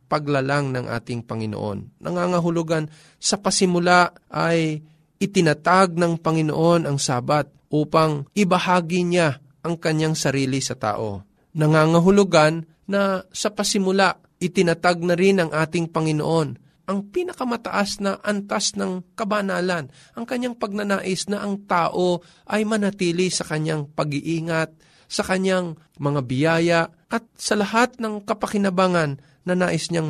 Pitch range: 155-195 Hz